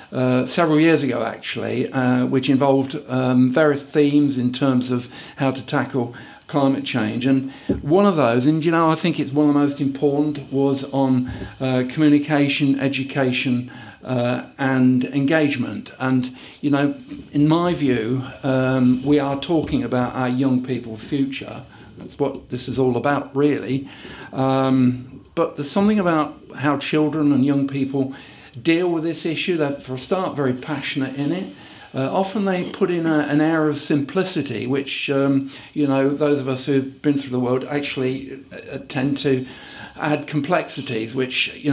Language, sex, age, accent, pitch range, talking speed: English, male, 50-69, British, 130-145 Hz, 165 wpm